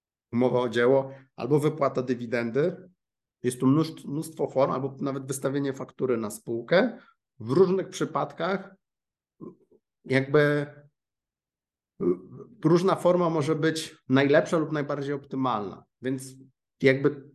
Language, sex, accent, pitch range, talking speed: Polish, male, native, 130-155 Hz, 105 wpm